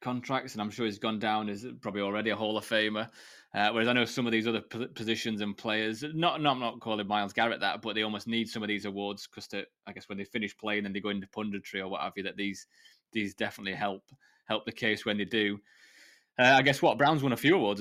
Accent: British